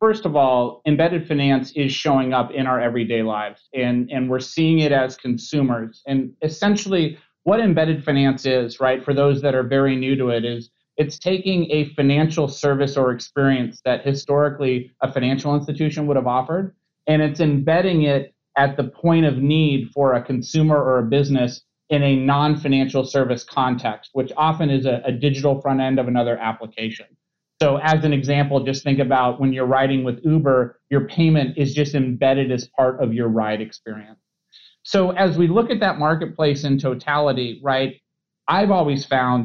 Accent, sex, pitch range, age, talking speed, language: American, male, 130-155 Hz, 30-49, 180 wpm, English